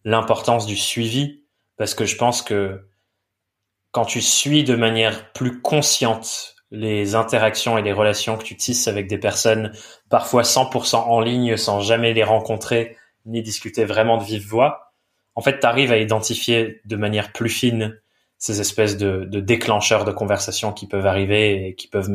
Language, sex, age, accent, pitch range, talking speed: French, male, 20-39, French, 105-115 Hz, 170 wpm